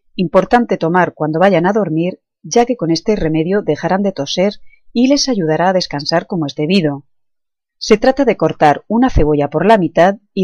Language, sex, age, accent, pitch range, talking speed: Spanish, female, 30-49, Spanish, 155-220 Hz, 185 wpm